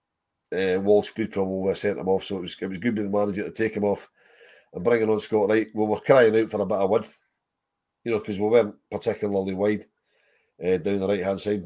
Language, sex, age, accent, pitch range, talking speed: English, male, 40-59, British, 95-110 Hz, 240 wpm